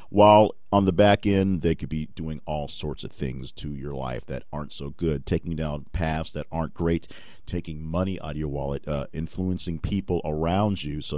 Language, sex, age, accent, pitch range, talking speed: English, male, 40-59, American, 75-95 Hz, 205 wpm